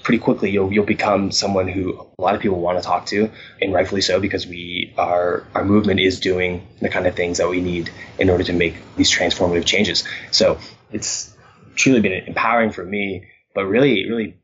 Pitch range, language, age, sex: 90-110 Hz, English, 20-39, male